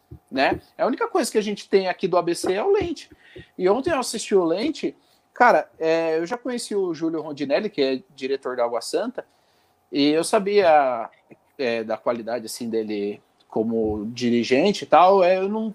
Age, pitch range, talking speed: 40-59, 160-225 Hz, 190 wpm